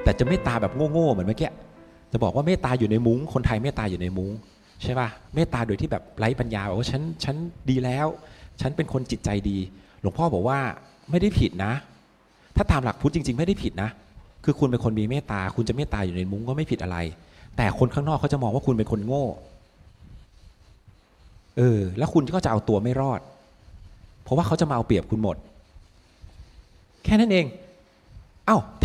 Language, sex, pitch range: Thai, male, 100-135 Hz